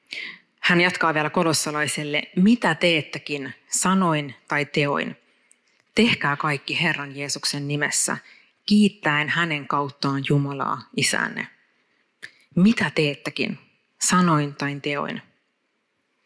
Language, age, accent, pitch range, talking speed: Finnish, 30-49, native, 145-180 Hz, 90 wpm